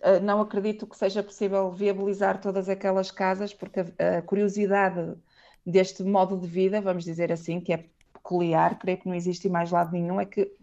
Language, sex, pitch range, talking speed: Portuguese, female, 180-210 Hz, 175 wpm